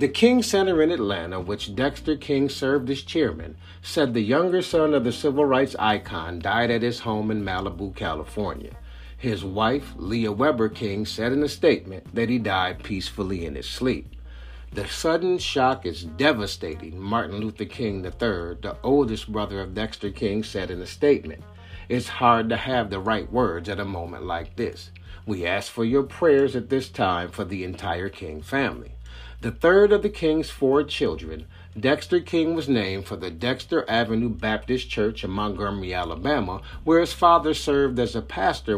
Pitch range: 90-135 Hz